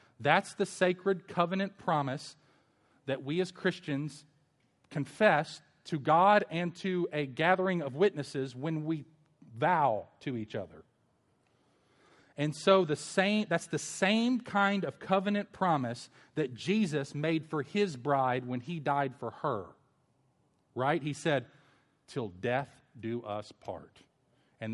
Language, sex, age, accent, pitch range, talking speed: English, male, 40-59, American, 125-160 Hz, 135 wpm